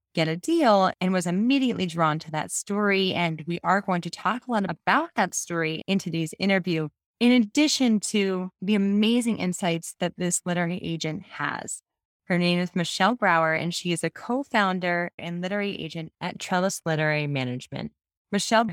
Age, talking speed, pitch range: 20-39, 170 wpm, 170-210 Hz